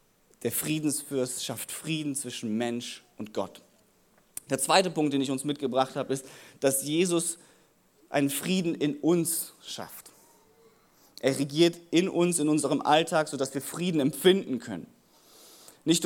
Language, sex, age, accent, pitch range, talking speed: German, male, 30-49, German, 140-200 Hz, 140 wpm